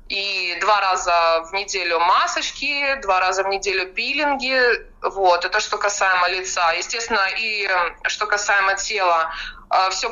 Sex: female